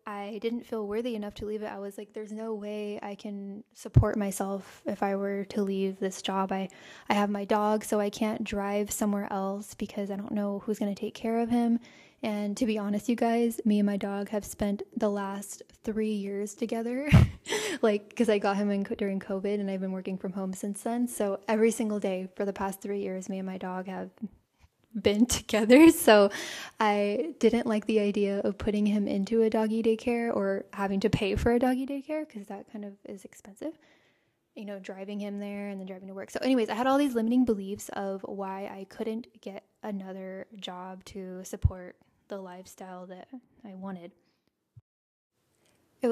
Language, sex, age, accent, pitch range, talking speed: English, female, 10-29, American, 200-225 Hz, 205 wpm